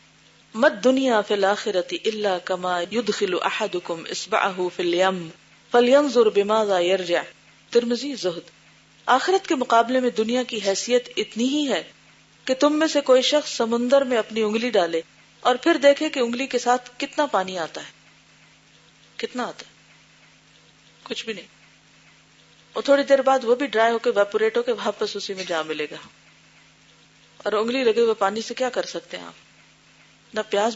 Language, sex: Urdu, female